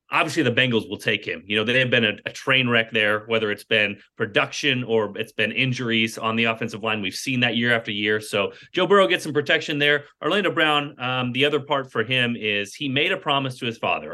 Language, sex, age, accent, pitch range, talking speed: English, male, 30-49, American, 110-140 Hz, 240 wpm